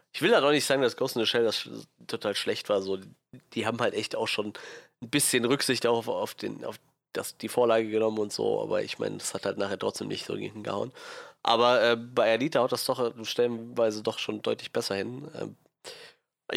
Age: 20-39